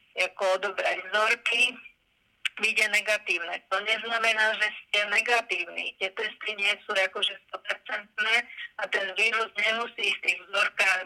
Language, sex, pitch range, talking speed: Slovak, female, 195-220 Hz, 125 wpm